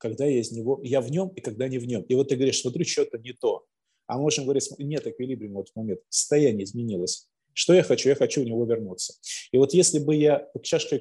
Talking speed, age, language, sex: 250 wpm, 20-39, Russian, male